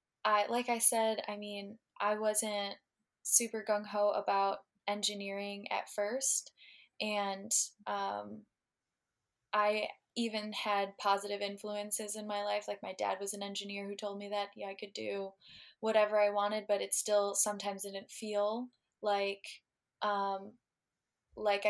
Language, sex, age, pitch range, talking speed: English, female, 20-39, 195-210 Hz, 140 wpm